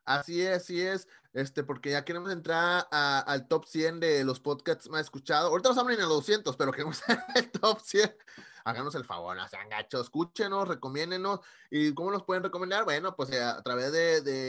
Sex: male